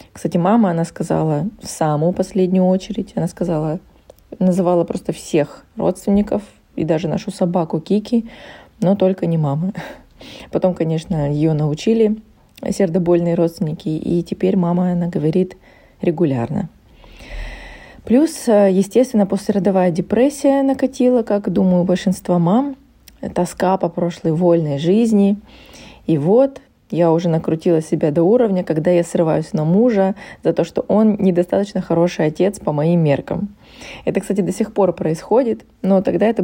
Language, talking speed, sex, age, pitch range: Russian, 135 wpm, female, 20-39, 170-205 Hz